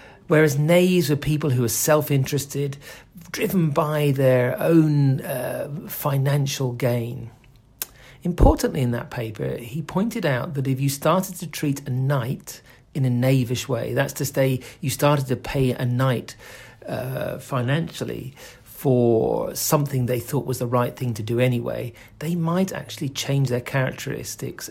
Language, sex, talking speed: English, male, 150 wpm